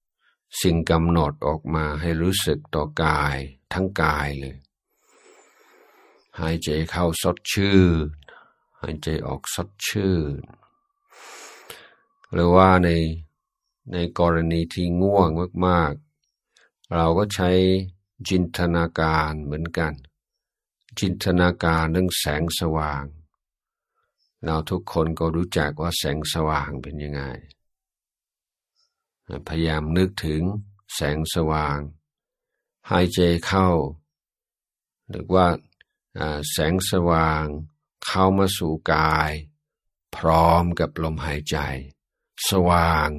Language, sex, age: Thai, male, 60-79